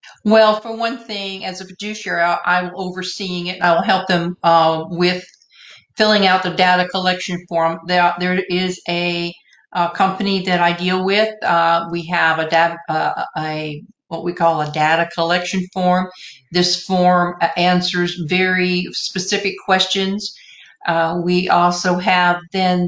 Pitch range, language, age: 175-190 Hz, English, 50-69